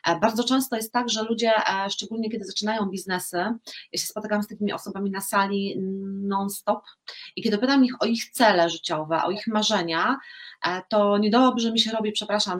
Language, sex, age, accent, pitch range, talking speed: Polish, female, 30-49, native, 200-265 Hz, 175 wpm